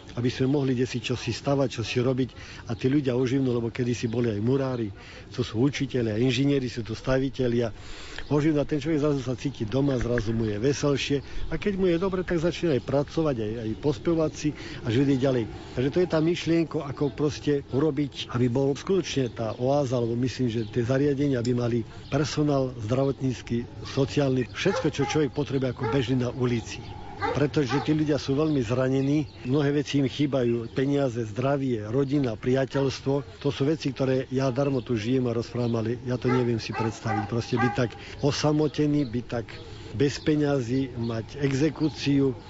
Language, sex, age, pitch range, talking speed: Slovak, male, 50-69, 120-145 Hz, 175 wpm